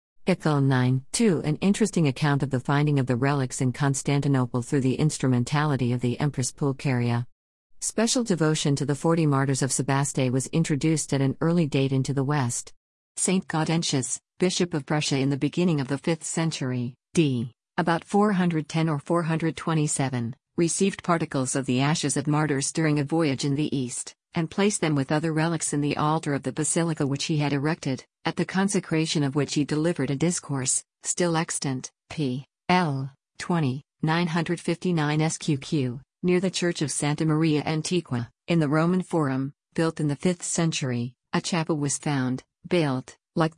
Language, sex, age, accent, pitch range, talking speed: Malayalam, female, 50-69, American, 135-165 Hz, 170 wpm